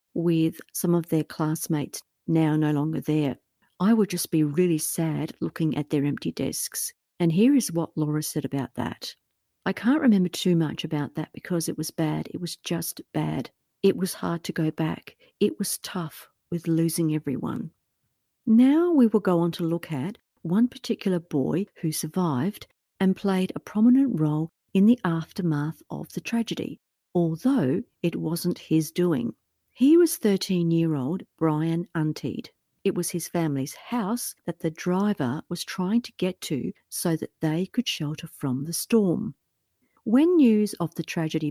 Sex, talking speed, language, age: female, 165 wpm, English, 50-69